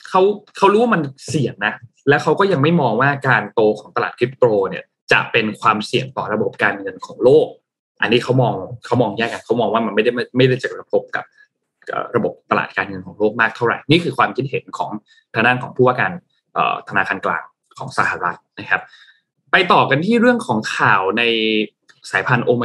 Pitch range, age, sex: 125-195 Hz, 20-39, male